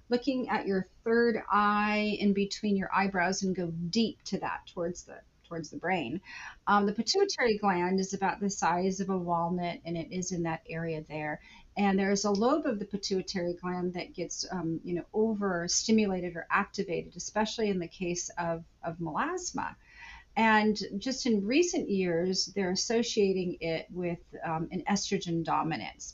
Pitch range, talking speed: 170-215 Hz, 170 wpm